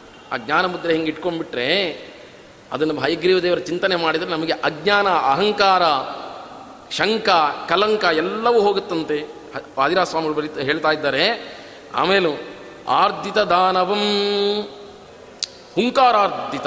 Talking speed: 95 wpm